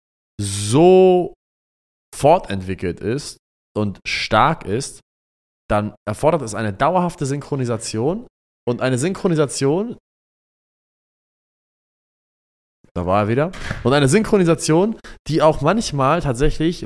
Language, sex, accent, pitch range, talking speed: German, male, German, 95-140 Hz, 95 wpm